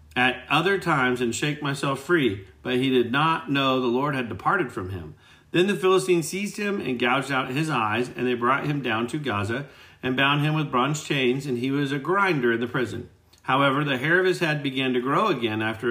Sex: male